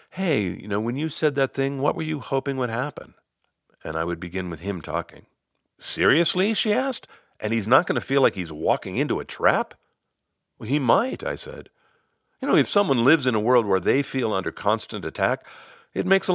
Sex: male